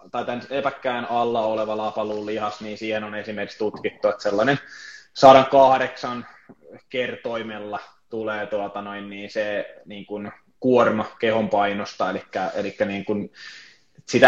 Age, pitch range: 20-39, 105-120 Hz